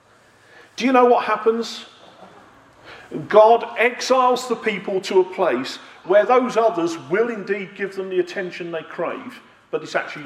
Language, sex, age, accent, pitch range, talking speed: English, male, 40-59, British, 160-245 Hz, 150 wpm